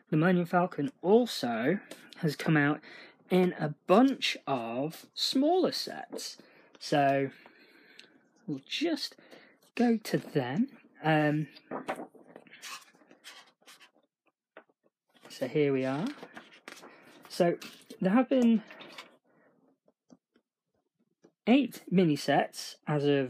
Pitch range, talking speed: 145-210 Hz, 85 wpm